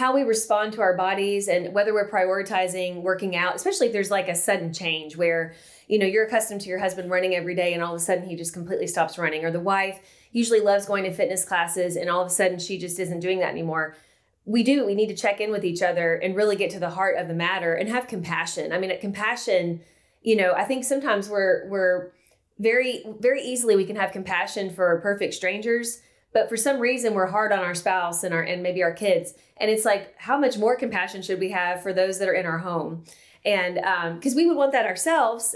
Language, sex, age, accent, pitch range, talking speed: English, female, 30-49, American, 180-215 Hz, 245 wpm